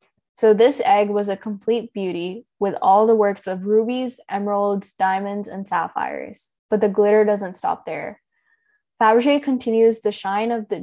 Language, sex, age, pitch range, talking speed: English, female, 10-29, 195-230 Hz, 160 wpm